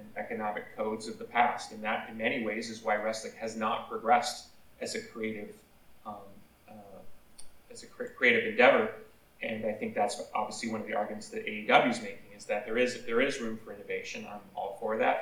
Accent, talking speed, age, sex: American, 200 wpm, 30-49, male